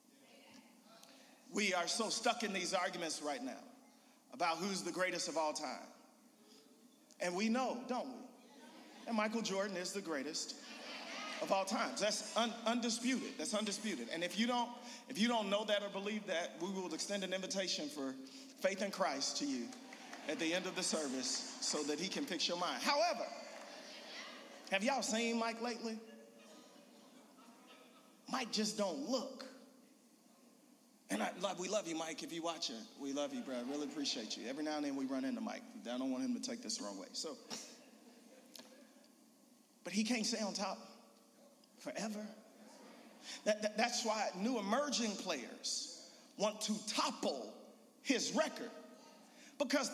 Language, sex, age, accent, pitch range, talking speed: English, male, 40-59, American, 210-270 Hz, 160 wpm